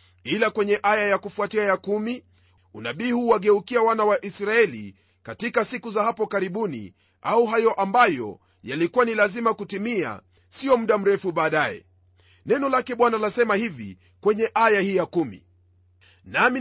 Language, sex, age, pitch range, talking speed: Swahili, male, 40-59, 140-230 Hz, 145 wpm